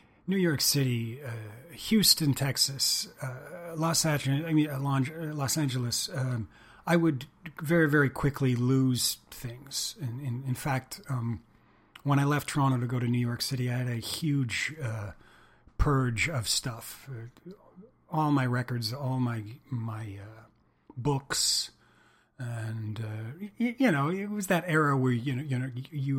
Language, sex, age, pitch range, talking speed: English, male, 40-59, 120-155 Hz, 155 wpm